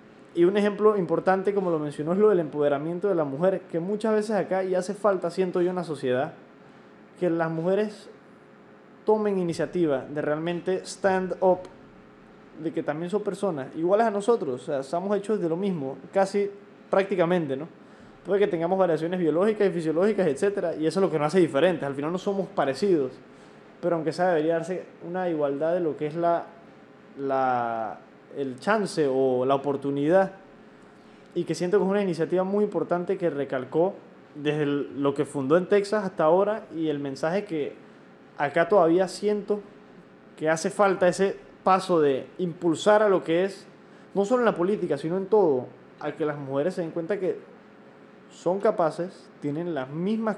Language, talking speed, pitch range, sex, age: Spanish, 180 wpm, 155-200 Hz, male, 20-39